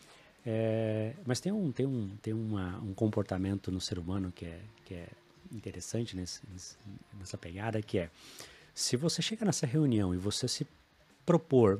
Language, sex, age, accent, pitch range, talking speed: Portuguese, male, 30-49, Brazilian, 95-130 Hz, 165 wpm